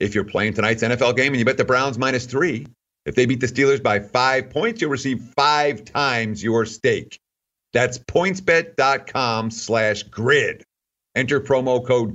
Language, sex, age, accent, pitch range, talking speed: English, male, 50-69, American, 110-160 Hz, 170 wpm